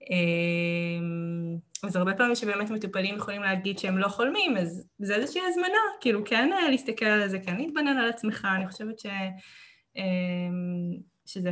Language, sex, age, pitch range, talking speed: Hebrew, female, 20-39, 175-205 Hz, 140 wpm